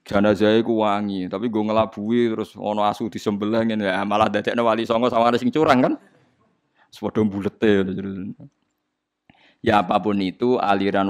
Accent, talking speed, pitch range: native, 145 wpm, 95-110 Hz